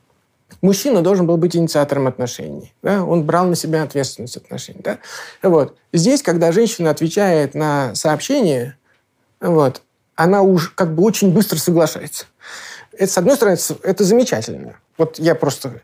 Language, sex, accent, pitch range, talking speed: Russian, male, native, 150-195 Hz, 145 wpm